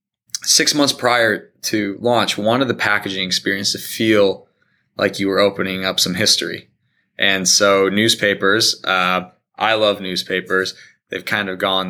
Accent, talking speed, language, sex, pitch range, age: American, 145 wpm, English, male, 95-115 Hz, 20-39